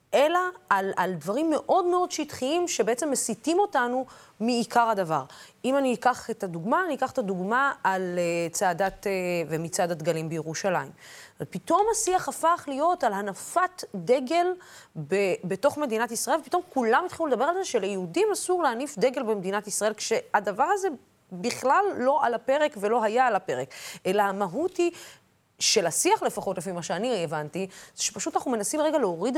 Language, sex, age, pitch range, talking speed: Hebrew, female, 30-49, 195-320 Hz, 160 wpm